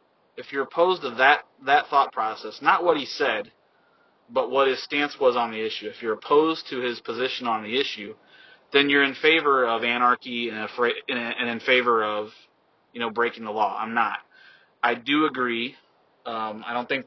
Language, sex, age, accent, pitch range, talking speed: English, male, 30-49, American, 110-130 Hz, 185 wpm